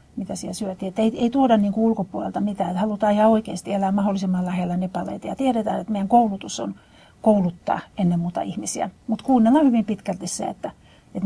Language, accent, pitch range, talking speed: Finnish, native, 190-225 Hz, 170 wpm